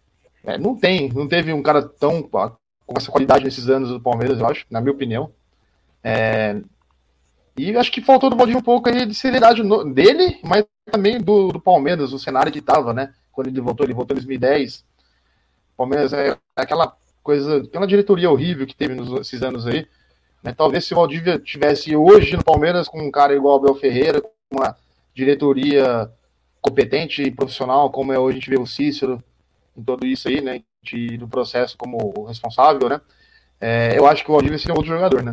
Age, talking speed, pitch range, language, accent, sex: 20-39, 195 wpm, 120-165 Hz, Portuguese, Brazilian, male